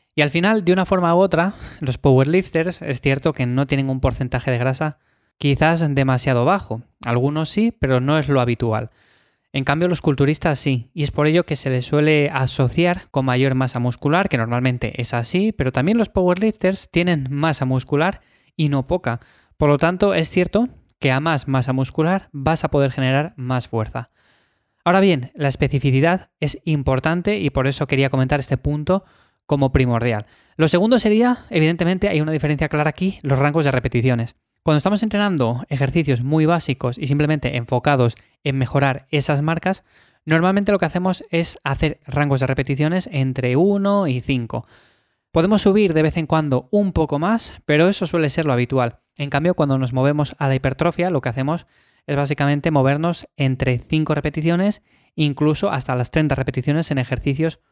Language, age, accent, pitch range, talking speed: Spanish, 20-39, Spanish, 130-170 Hz, 175 wpm